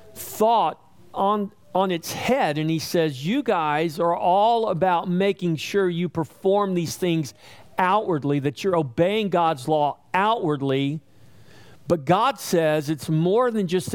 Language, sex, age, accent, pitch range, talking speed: English, male, 50-69, American, 140-190 Hz, 140 wpm